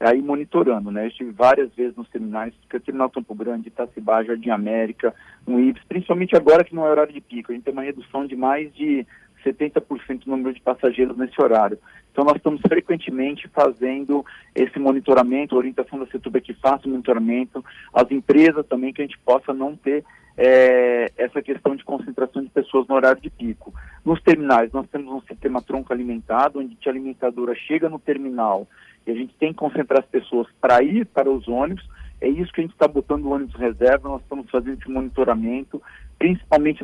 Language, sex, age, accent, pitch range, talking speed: Portuguese, male, 40-59, Brazilian, 125-150 Hz, 195 wpm